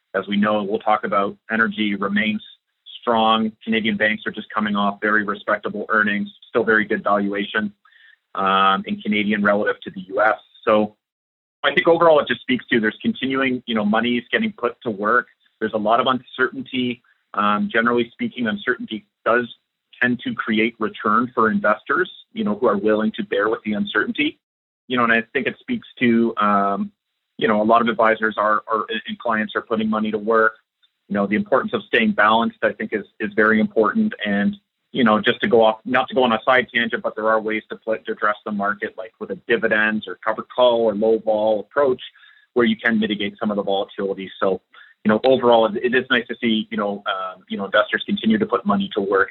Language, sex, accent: English, male, American